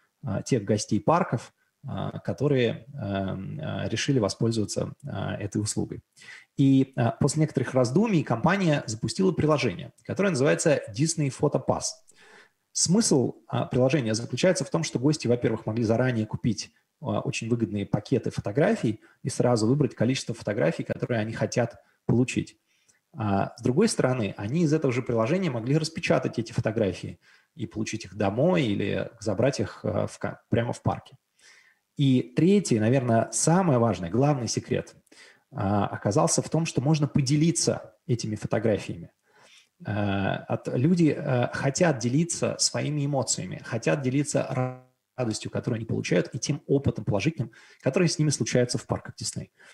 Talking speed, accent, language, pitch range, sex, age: 125 wpm, native, Russian, 115-150 Hz, male, 20-39